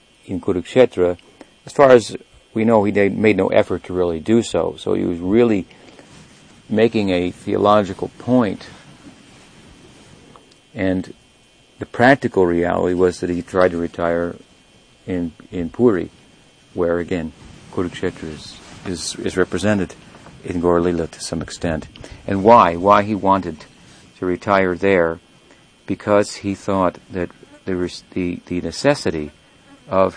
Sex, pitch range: male, 85-105 Hz